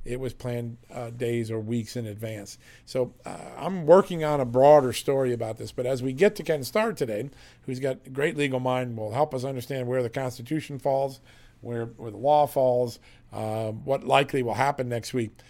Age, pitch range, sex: 40-59, 115-145 Hz, male